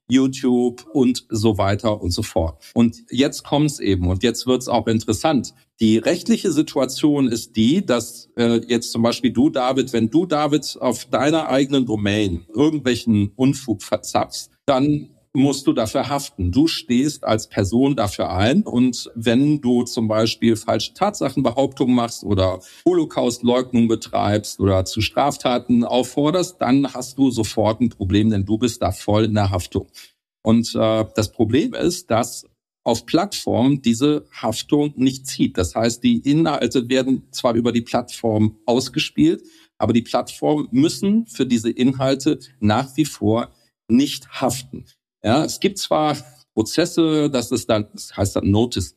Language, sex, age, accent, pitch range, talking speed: German, male, 40-59, German, 110-135 Hz, 150 wpm